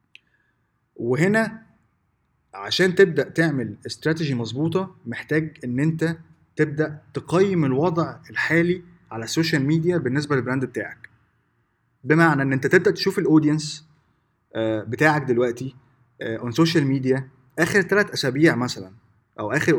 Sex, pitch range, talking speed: male, 120-155 Hz, 105 wpm